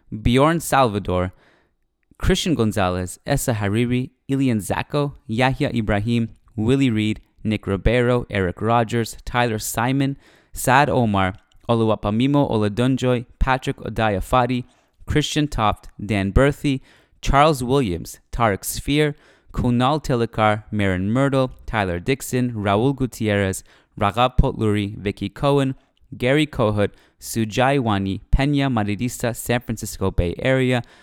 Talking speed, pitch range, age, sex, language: 105 wpm, 105-130 Hz, 20-39, male, English